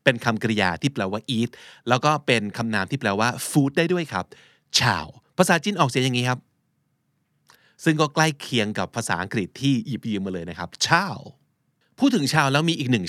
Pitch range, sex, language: 110-150 Hz, male, Thai